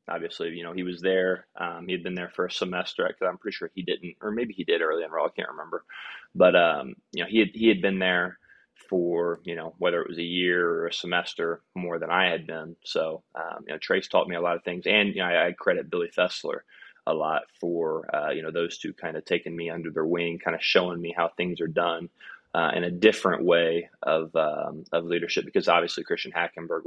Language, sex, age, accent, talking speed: English, male, 20-39, American, 245 wpm